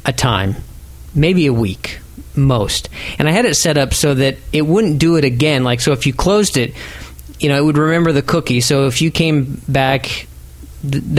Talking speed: 205 wpm